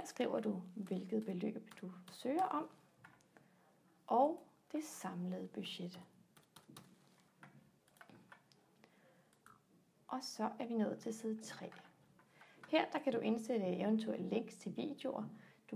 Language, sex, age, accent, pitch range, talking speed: Danish, female, 30-49, native, 195-265 Hz, 115 wpm